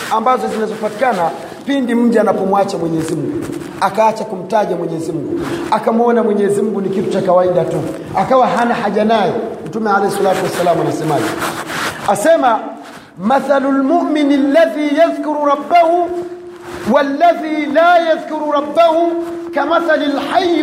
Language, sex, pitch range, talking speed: Swahili, male, 215-315 Hz, 115 wpm